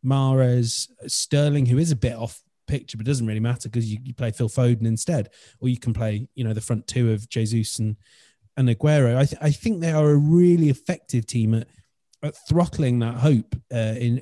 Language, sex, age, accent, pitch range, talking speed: English, male, 30-49, British, 115-145 Hz, 210 wpm